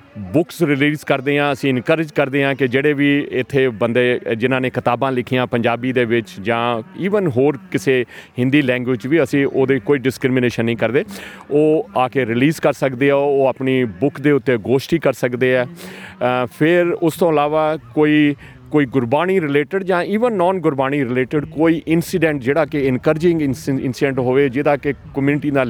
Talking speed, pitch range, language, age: 170 wpm, 125-155 Hz, Punjabi, 40-59